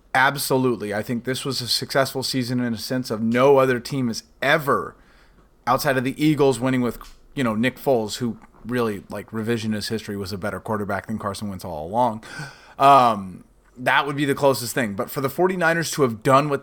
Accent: American